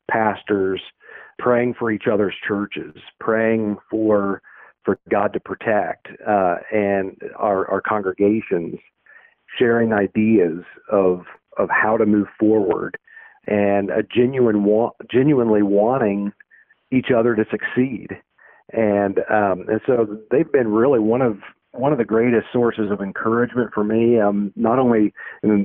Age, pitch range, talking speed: 50-69, 105-120 Hz, 135 wpm